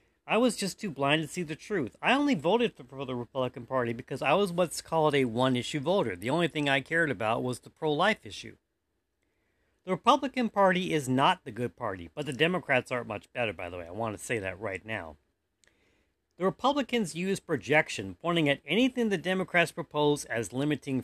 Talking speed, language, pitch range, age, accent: 200 wpm, English, 120-185 Hz, 40-59, American